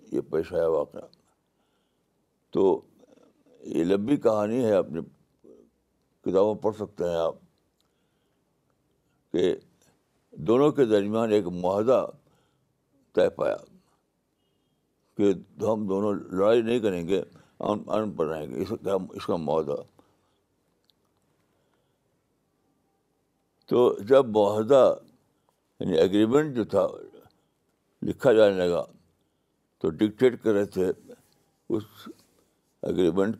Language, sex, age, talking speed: Urdu, male, 60-79, 90 wpm